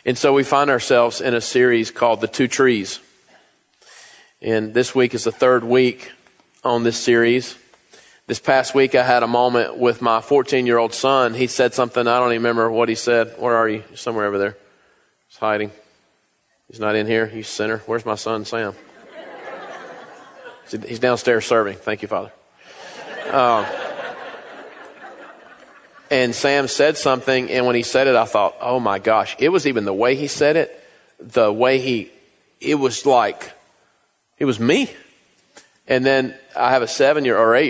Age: 40-59